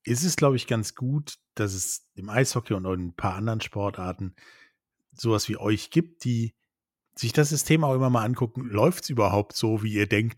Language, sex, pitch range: German, male, 105-130 Hz